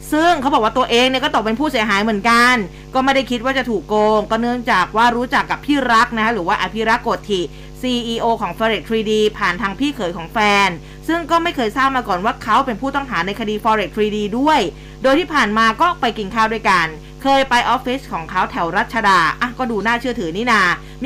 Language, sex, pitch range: Thai, female, 210-265 Hz